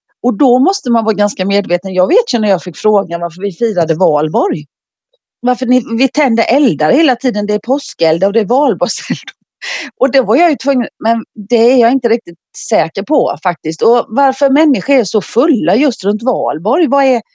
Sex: female